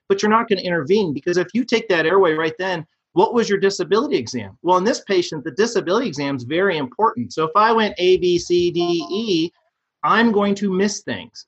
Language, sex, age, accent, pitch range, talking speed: English, male, 30-49, American, 140-195 Hz, 225 wpm